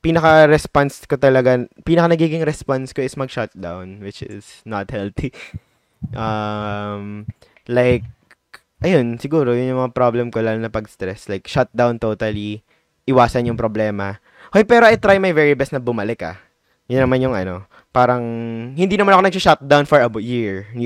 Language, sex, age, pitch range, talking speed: Filipino, male, 20-39, 110-145 Hz, 150 wpm